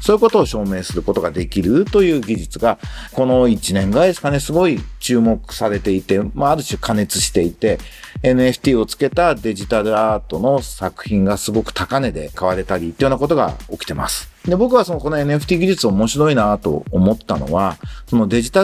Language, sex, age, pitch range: Japanese, male, 40-59, 110-175 Hz